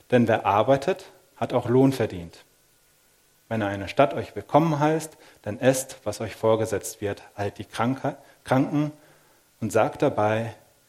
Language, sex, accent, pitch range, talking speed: German, male, German, 110-135 Hz, 140 wpm